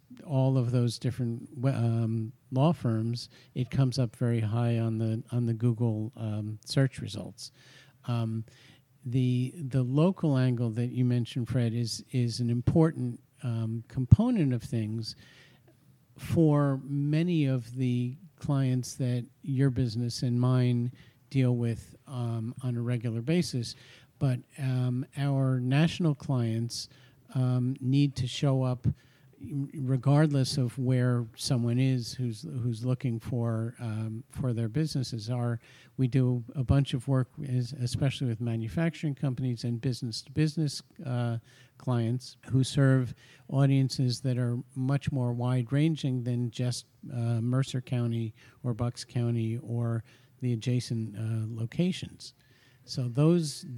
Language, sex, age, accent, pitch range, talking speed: English, male, 50-69, American, 120-135 Hz, 130 wpm